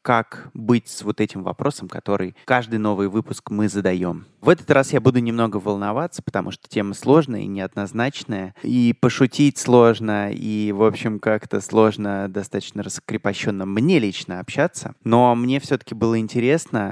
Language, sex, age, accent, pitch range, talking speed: Russian, male, 20-39, native, 100-120 Hz, 155 wpm